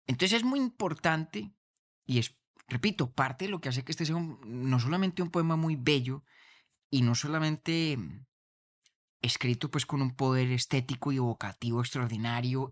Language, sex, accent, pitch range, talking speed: Spanish, male, Spanish, 125-165 Hz, 160 wpm